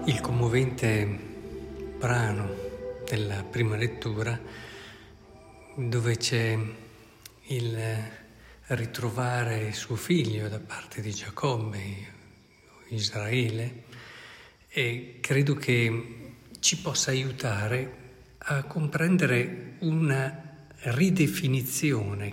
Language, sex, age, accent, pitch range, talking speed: Italian, male, 50-69, native, 110-130 Hz, 75 wpm